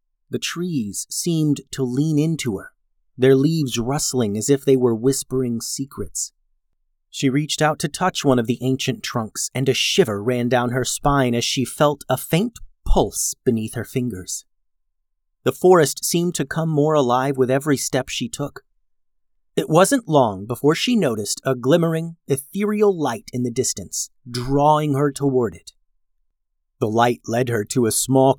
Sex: male